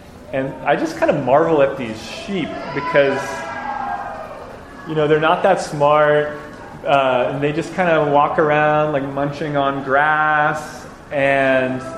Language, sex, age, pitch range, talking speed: English, male, 20-39, 125-155 Hz, 145 wpm